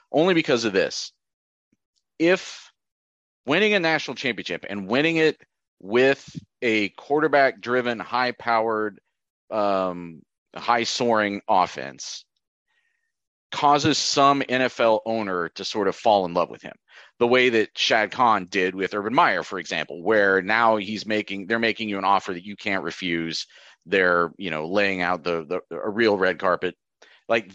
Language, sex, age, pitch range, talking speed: English, male, 40-59, 100-130 Hz, 150 wpm